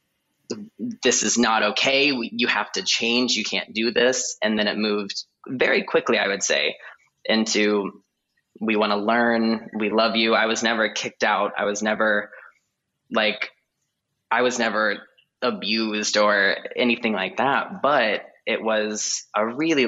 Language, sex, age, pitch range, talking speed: English, male, 20-39, 105-115 Hz, 155 wpm